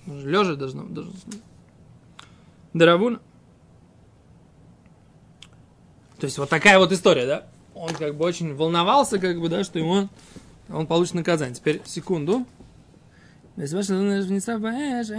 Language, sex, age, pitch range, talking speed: Russian, male, 20-39, 160-200 Hz, 90 wpm